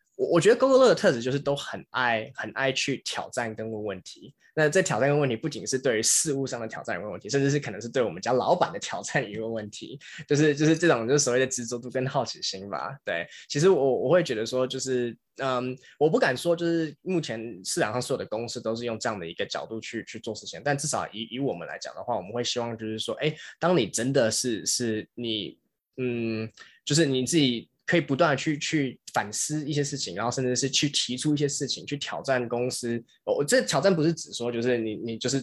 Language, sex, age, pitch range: Chinese, male, 20-39, 120-150 Hz